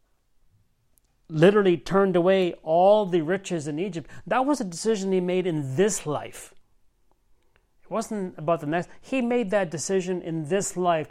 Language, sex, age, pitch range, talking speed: English, male, 40-59, 155-190 Hz, 155 wpm